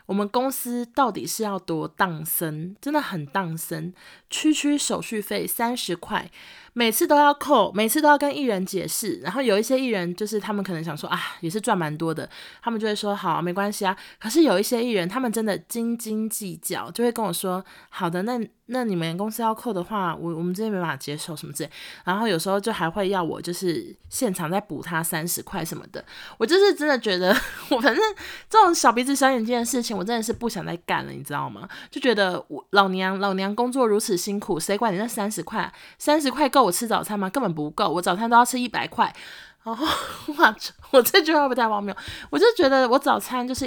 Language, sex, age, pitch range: Chinese, female, 20-39, 180-240 Hz